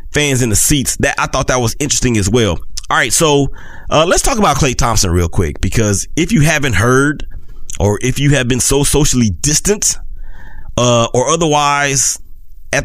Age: 30-49